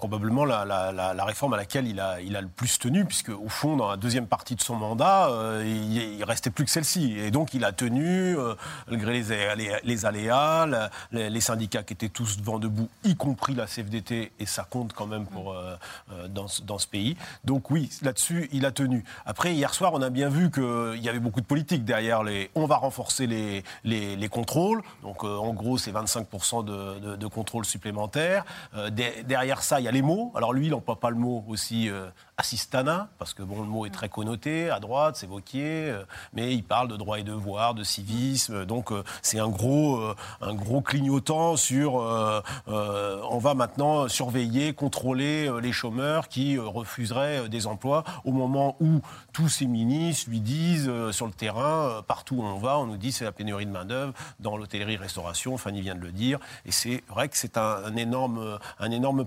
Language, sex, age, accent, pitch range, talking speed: French, male, 40-59, French, 105-135 Hz, 210 wpm